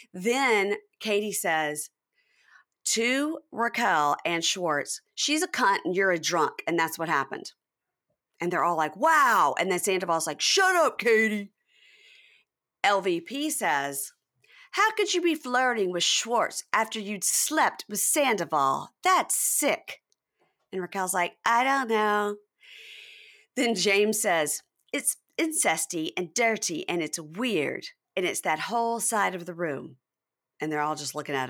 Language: English